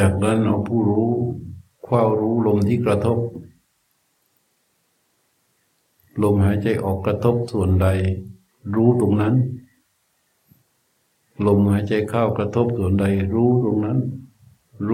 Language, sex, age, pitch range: Thai, male, 60-79, 105-125 Hz